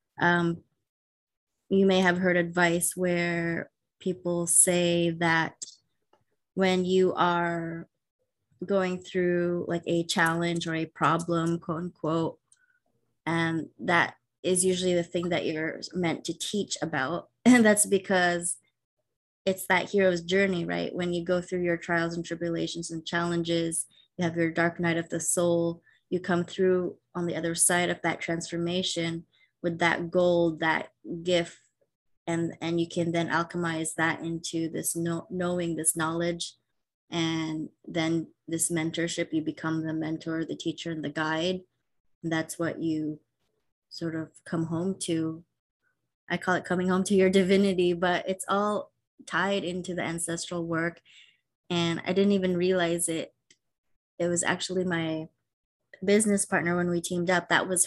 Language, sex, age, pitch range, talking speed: English, female, 20-39, 165-180 Hz, 150 wpm